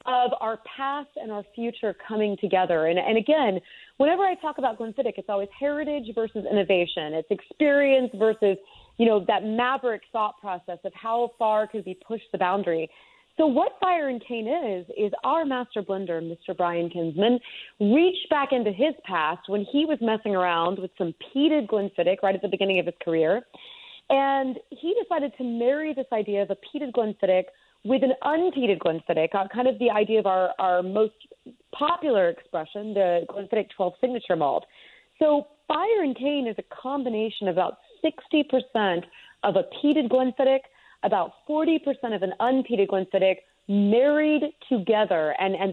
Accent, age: American, 30-49